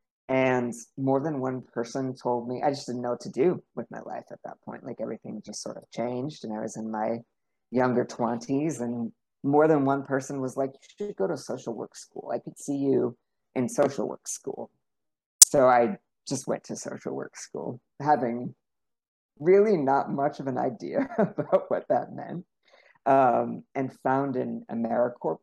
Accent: American